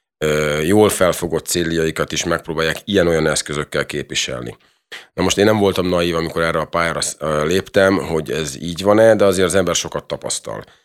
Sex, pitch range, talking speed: male, 80-95 Hz, 160 wpm